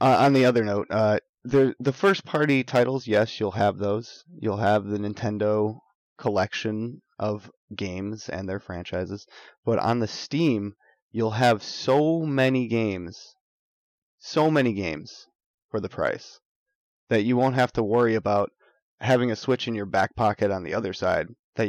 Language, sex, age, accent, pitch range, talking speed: English, male, 20-39, American, 105-120 Hz, 165 wpm